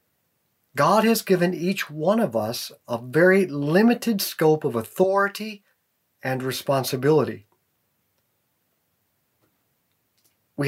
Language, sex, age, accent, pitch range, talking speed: English, male, 40-59, American, 120-190 Hz, 90 wpm